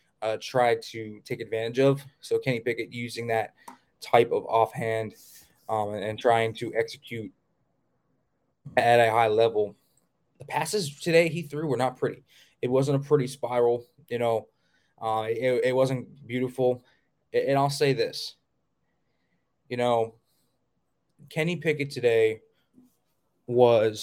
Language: English